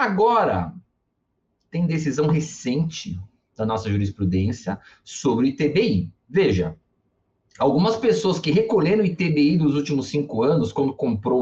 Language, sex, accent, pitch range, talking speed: Portuguese, male, Brazilian, 140-220 Hz, 120 wpm